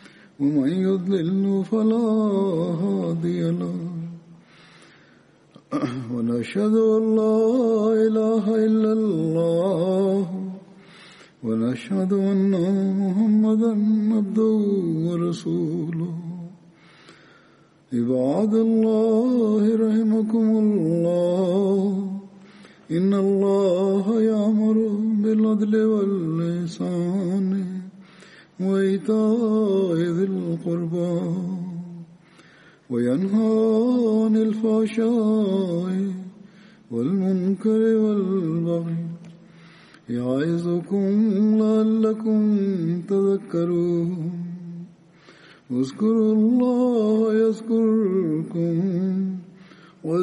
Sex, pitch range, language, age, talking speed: male, 170-220 Hz, Russian, 50-69, 45 wpm